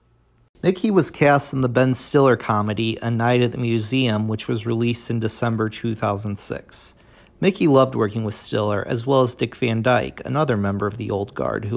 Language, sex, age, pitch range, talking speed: English, male, 40-59, 110-130 Hz, 190 wpm